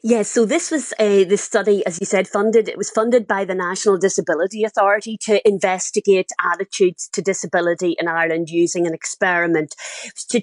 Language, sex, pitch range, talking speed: English, female, 195-230 Hz, 180 wpm